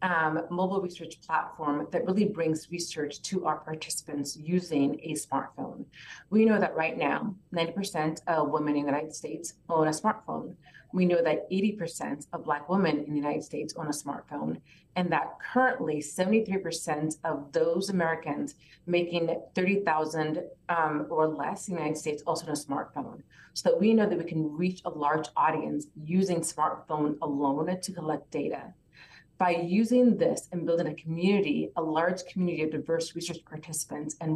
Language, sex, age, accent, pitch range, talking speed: English, female, 30-49, American, 155-185 Hz, 165 wpm